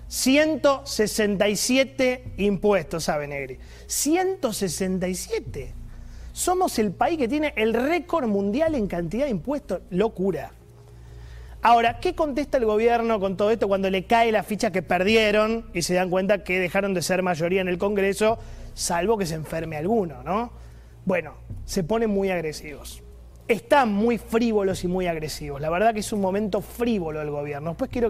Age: 30-49